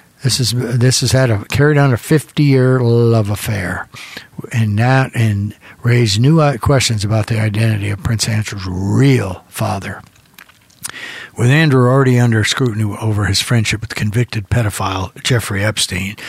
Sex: male